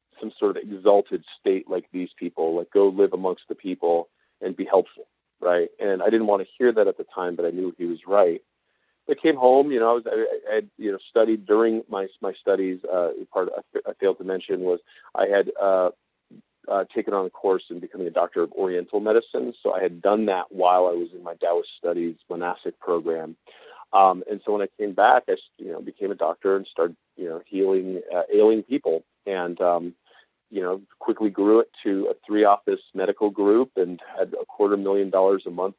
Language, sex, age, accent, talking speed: English, male, 40-59, American, 220 wpm